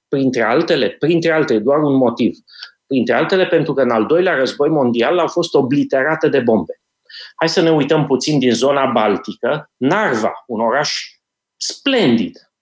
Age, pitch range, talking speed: 30-49, 135-205 Hz, 155 wpm